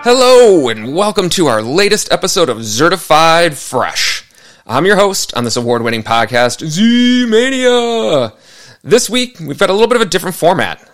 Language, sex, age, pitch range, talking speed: English, male, 30-49, 120-180 Hz, 160 wpm